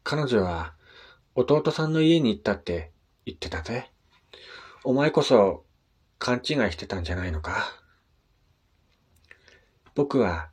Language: Japanese